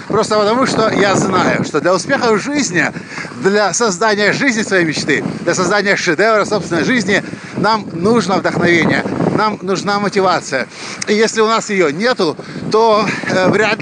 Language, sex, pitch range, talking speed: Russian, male, 185-230 Hz, 150 wpm